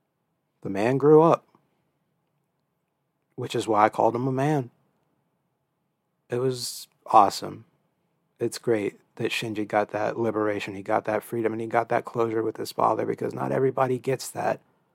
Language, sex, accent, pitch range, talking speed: English, male, American, 110-150 Hz, 155 wpm